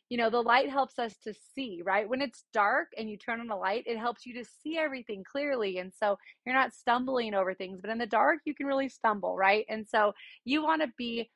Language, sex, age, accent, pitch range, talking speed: English, female, 30-49, American, 200-245 Hz, 250 wpm